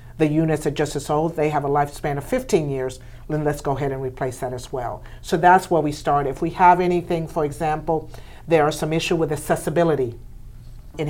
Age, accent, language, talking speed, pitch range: 50-69, American, English, 215 wpm, 140-165 Hz